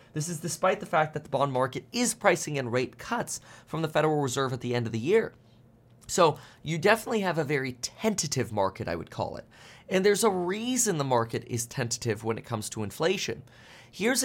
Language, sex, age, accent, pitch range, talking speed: English, male, 30-49, American, 120-170 Hz, 210 wpm